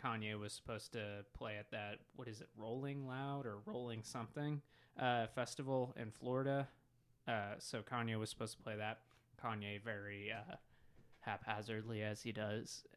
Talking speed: 155 wpm